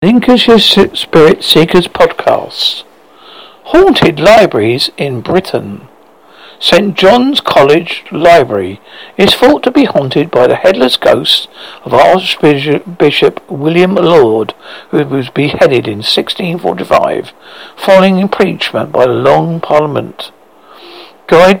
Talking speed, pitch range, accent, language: 105 wpm, 145-190 Hz, British, English